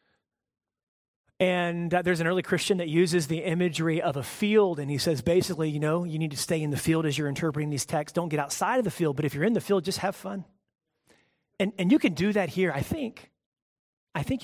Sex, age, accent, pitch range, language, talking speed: male, 30-49, American, 150-225 Hz, English, 235 wpm